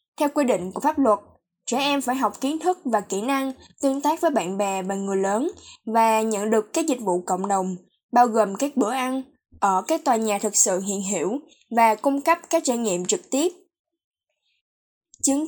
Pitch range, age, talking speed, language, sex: 215-275 Hz, 10-29, 205 wpm, Vietnamese, female